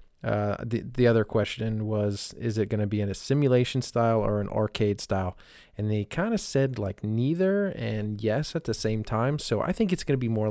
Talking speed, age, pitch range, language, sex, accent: 230 wpm, 30-49, 105-115 Hz, English, male, American